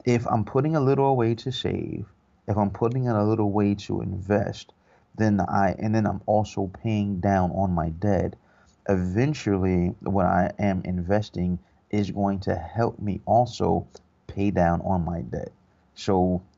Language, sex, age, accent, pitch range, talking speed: English, male, 30-49, American, 90-105 Hz, 165 wpm